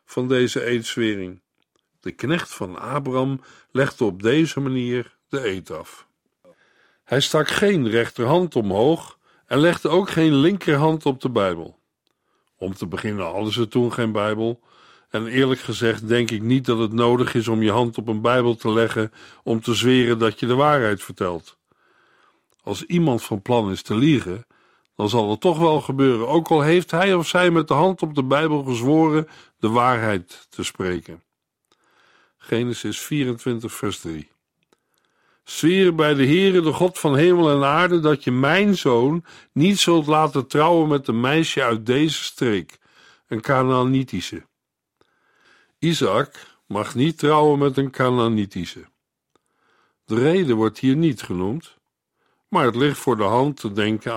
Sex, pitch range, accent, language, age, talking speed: male, 115-155 Hz, Dutch, Dutch, 50-69, 155 wpm